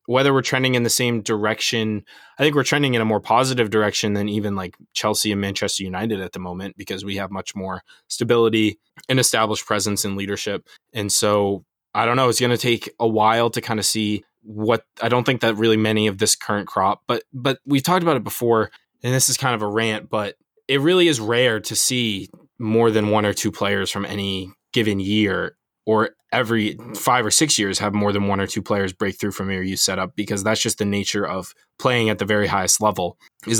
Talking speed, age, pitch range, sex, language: 225 wpm, 20-39, 100-115 Hz, male, English